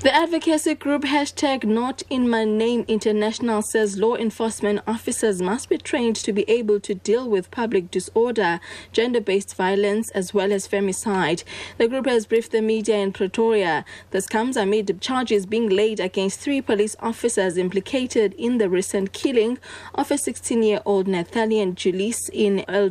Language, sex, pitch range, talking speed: English, female, 195-240 Hz, 160 wpm